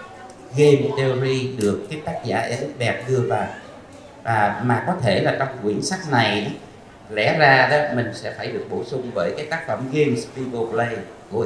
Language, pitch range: Vietnamese, 120-150 Hz